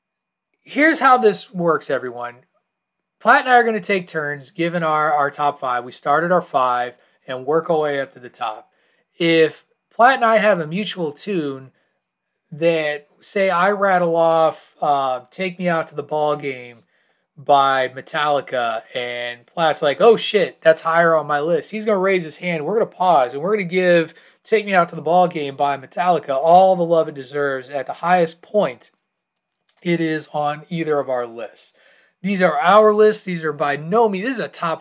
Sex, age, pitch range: male, 30-49, 145-190 Hz